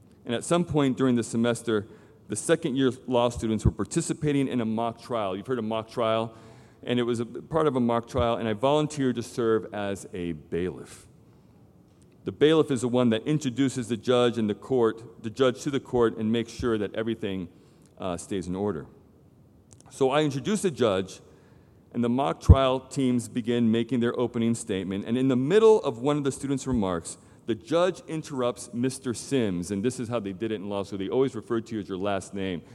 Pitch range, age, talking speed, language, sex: 110-140 Hz, 40-59, 210 wpm, English, male